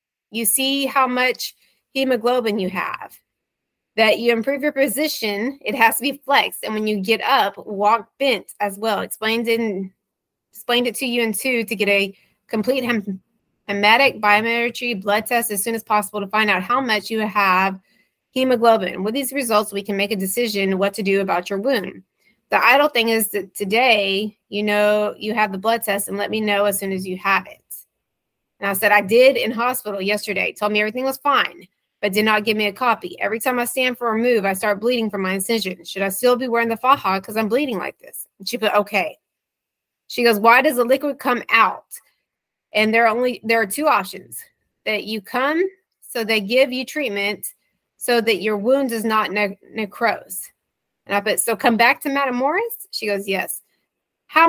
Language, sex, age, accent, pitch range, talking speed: English, female, 20-39, American, 205-255 Hz, 205 wpm